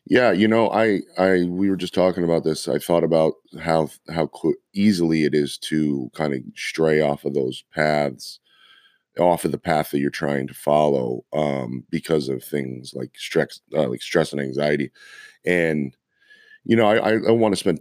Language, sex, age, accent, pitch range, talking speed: English, male, 30-49, American, 75-90 Hz, 185 wpm